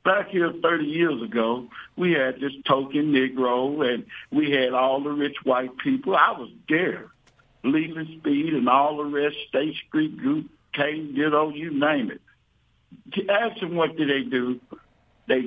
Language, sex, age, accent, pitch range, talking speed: English, male, 60-79, American, 145-230 Hz, 175 wpm